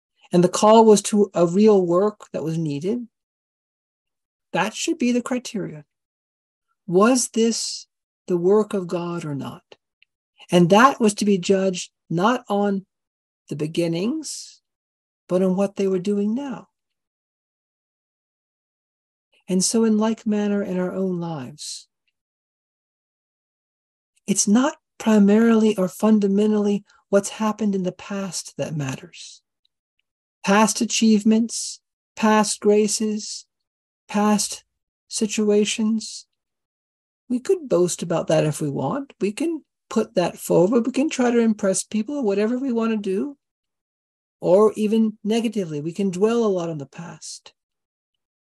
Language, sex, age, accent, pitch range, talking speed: English, male, 50-69, American, 175-220 Hz, 130 wpm